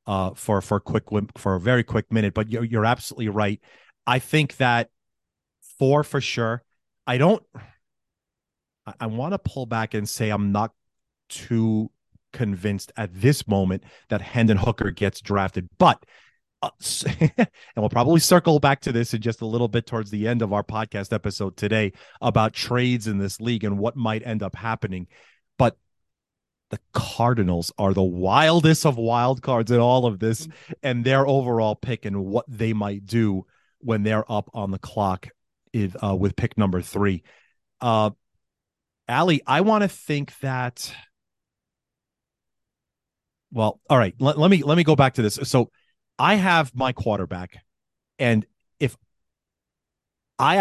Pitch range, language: 105-125 Hz, English